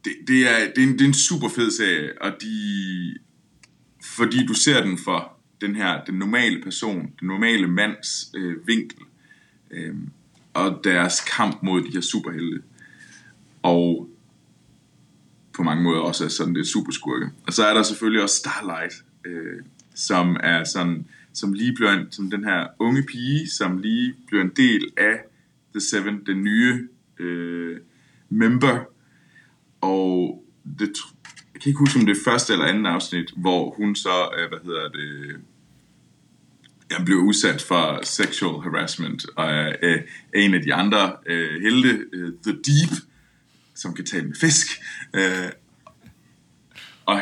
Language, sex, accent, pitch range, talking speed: Danish, male, native, 90-130 Hz, 145 wpm